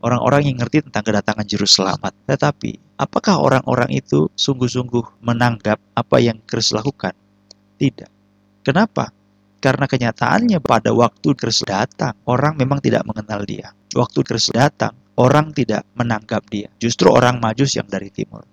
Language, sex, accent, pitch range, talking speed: Indonesian, male, native, 105-125 Hz, 140 wpm